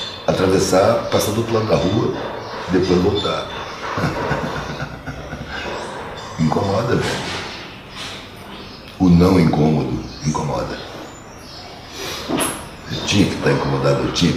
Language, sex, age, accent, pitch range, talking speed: Portuguese, male, 60-79, Brazilian, 80-105 Hz, 100 wpm